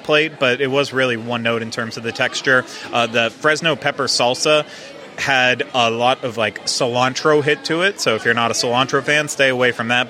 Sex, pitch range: male, 120-145 Hz